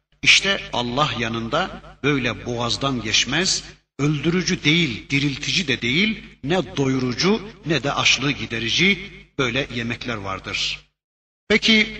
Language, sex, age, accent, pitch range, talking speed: Turkish, male, 60-79, native, 120-180 Hz, 105 wpm